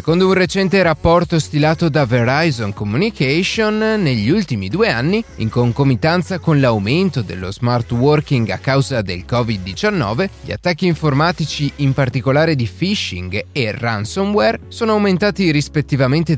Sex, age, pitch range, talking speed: male, 30-49, 115-175 Hz, 130 wpm